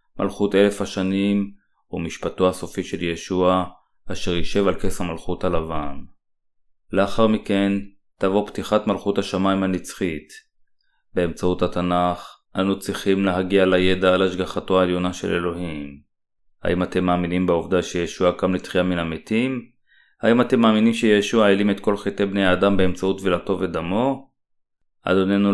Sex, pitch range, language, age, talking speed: male, 90-100 Hz, Hebrew, 30-49, 125 wpm